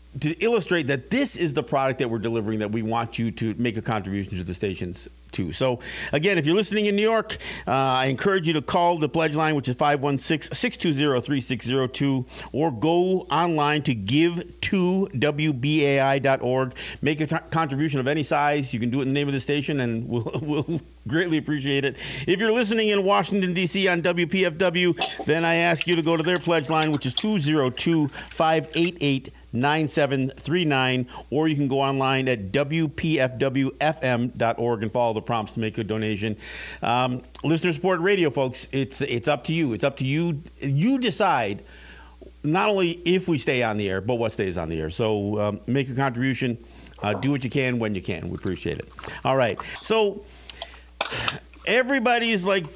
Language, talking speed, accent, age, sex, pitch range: English, 185 wpm, American, 50-69, male, 125-170 Hz